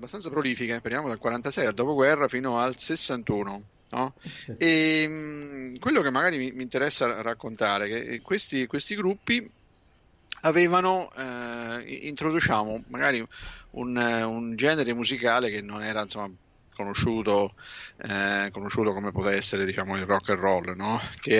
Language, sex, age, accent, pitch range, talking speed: Italian, male, 50-69, native, 105-140 Hz, 130 wpm